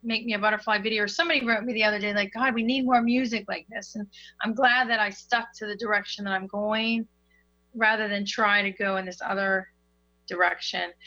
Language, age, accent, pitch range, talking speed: English, 30-49, American, 195-240 Hz, 215 wpm